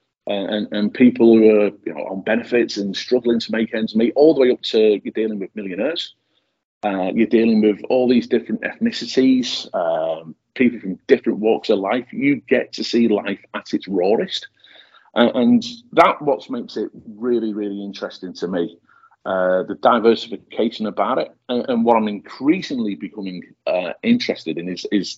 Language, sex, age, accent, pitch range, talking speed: English, male, 40-59, British, 105-160 Hz, 175 wpm